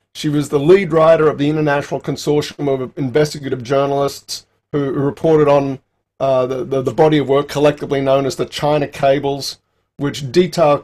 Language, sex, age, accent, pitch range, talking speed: English, male, 40-59, Australian, 130-150 Hz, 165 wpm